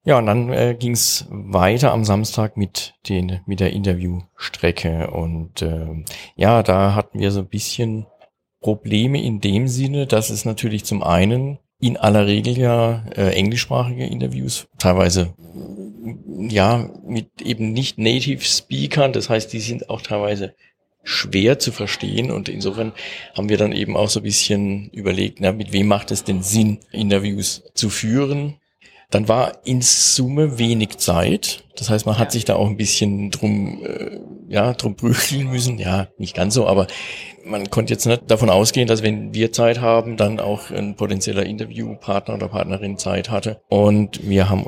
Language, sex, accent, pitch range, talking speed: German, male, German, 95-115 Hz, 165 wpm